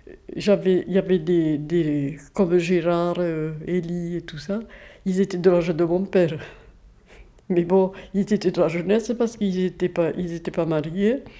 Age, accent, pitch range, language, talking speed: 60-79, French, 170-200 Hz, French, 170 wpm